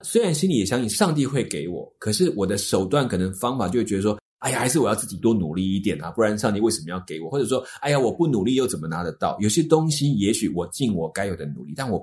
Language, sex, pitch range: Chinese, male, 95-130 Hz